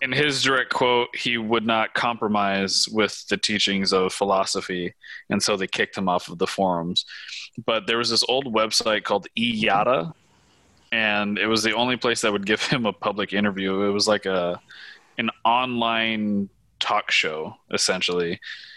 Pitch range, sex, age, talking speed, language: 95-115 Hz, male, 20-39, 165 wpm, English